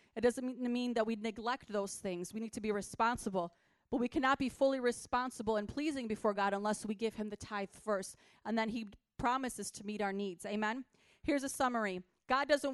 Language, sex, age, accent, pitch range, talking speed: English, female, 30-49, American, 220-265 Hz, 205 wpm